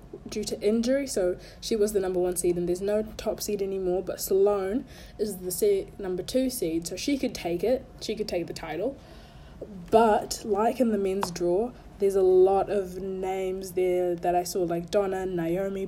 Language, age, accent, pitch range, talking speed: English, 20-39, Australian, 185-230 Hz, 195 wpm